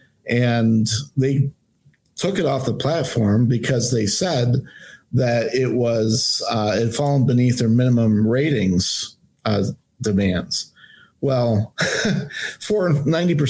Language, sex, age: English, male, 50-69